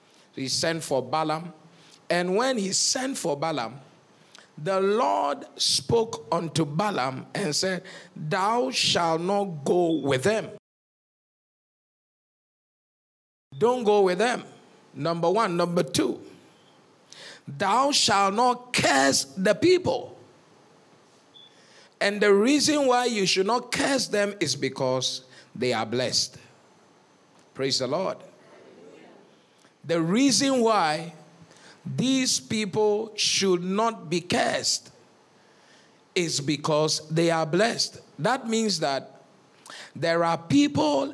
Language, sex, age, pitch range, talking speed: English, male, 50-69, 165-230 Hz, 110 wpm